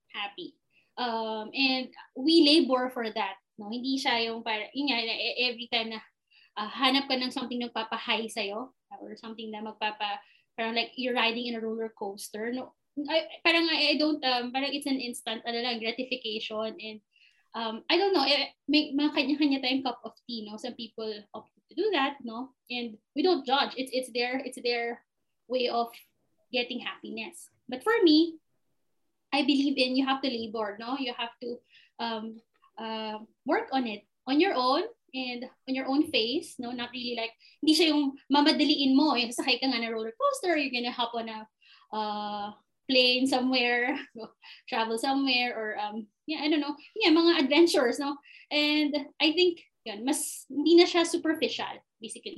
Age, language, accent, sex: 20-39, Filipino, native, female